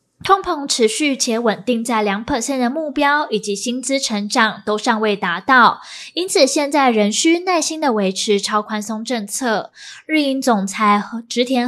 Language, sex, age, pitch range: Chinese, female, 10-29, 215-275 Hz